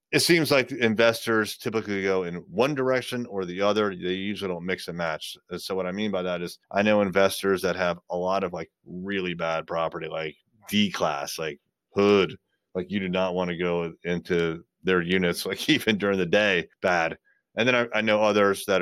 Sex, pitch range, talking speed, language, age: male, 95-120 Hz, 205 wpm, English, 30-49